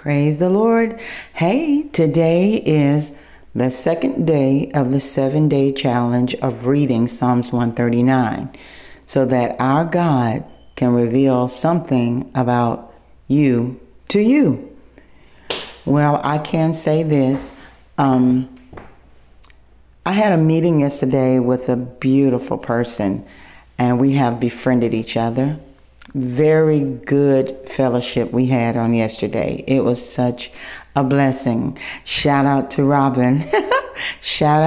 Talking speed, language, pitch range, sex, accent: 115 wpm, English, 125-150 Hz, female, American